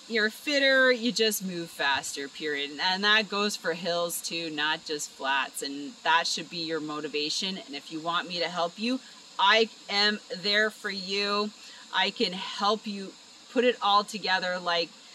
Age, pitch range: 30-49, 175-245 Hz